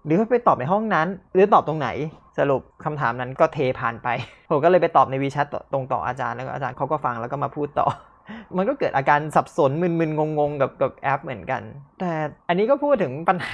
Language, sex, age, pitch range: Thai, male, 20-39, 135-185 Hz